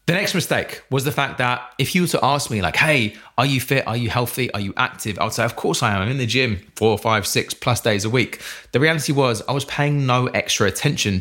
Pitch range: 105-130 Hz